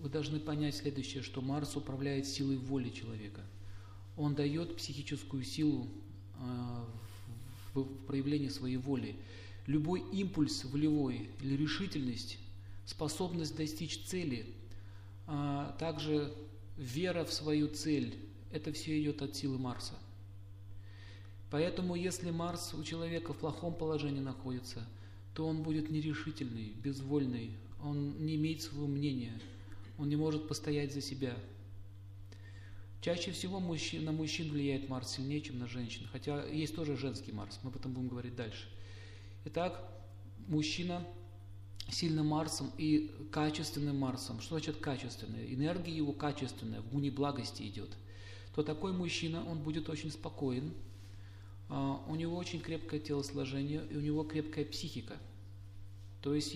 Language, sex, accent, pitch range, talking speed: Russian, male, native, 100-150 Hz, 125 wpm